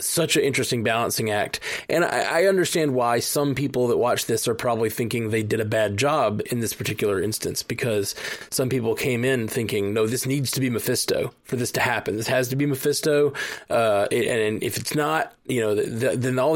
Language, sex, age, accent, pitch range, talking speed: English, male, 20-39, American, 120-150 Hz, 220 wpm